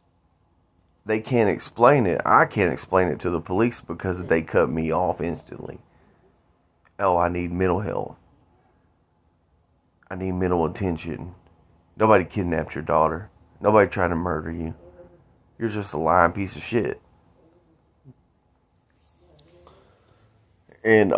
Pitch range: 85-100 Hz